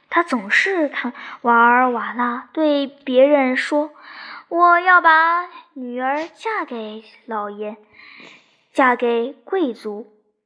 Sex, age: male, 10-29